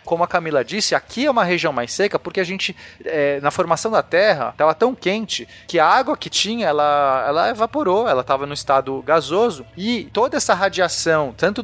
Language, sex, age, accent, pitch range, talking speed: Portuguese, male, 30-49, Brazilian, 125-185 Hz, 195 wpm